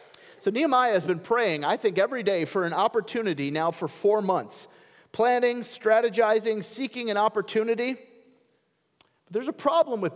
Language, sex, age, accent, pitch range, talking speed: English, male, 40-59, American, 200-280 Hz, 155 wpm